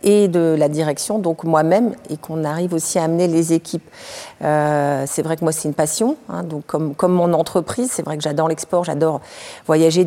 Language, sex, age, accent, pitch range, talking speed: French, female, 40-59, French, 150-175 Hz, 210 wpm